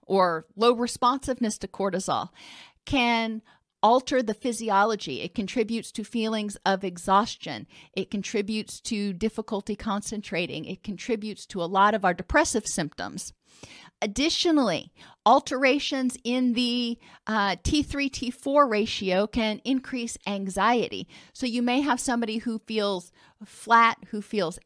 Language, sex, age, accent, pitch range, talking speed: English, female, 40-59, American, 200-250 Hz, 120 wpm